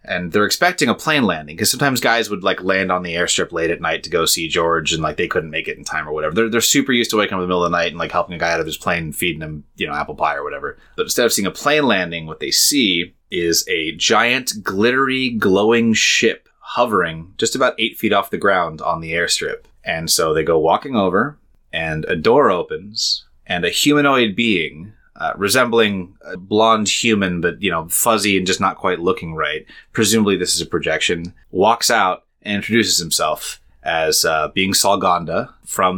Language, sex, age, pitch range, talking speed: English, male, 30-49, 85-125 Hz, 225 wpm